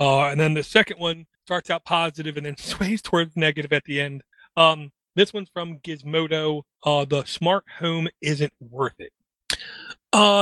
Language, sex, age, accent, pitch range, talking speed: English, male, 40-59, American, 145-175 Hz, 175 wpm